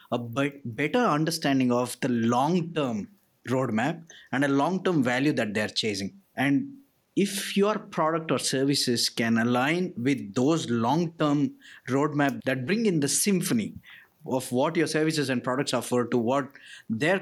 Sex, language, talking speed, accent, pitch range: male, English, 145 wpm, Indian, 125-165 Hz